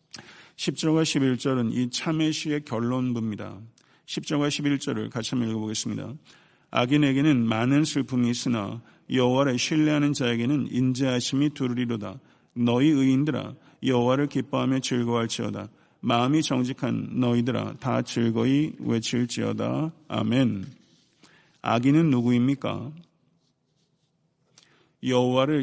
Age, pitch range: 50-69, 120-145 Hz